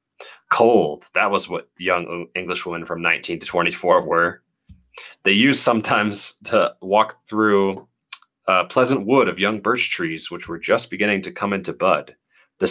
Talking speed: 160 wpm